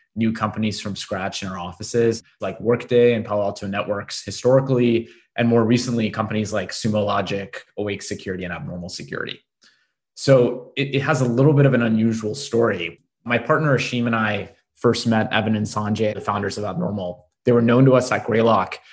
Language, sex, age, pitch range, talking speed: English, male, 20-39, 105-125 Hz, 185 wpm